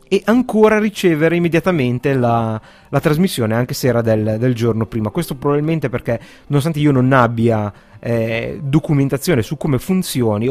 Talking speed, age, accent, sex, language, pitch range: 150 wpm, 30-49, native, male, Italian, 115-150 Hz